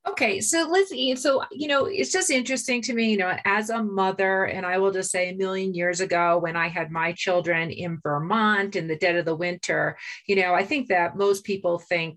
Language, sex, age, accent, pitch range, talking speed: English, female, 30-49, American, 165-190 Hz, 225 wpm